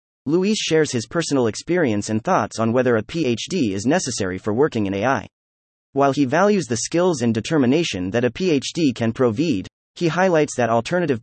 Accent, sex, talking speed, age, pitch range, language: American, male, 175 wpm, 30-49, 110-160 Hz, English